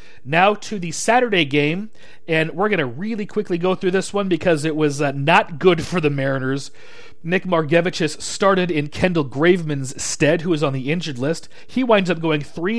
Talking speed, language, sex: 195 wpm, English, male